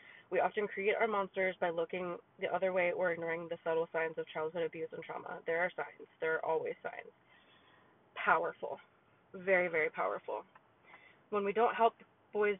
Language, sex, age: English, female, 20-39